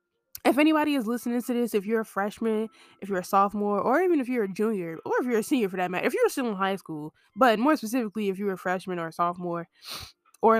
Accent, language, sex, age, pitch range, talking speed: American, English, female, 10-29, 185-245 Hz, 255 wpm